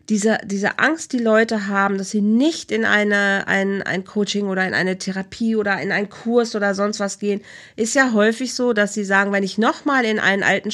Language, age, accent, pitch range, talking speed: German, 40-59, German, 195-235 Hz, 225 wpm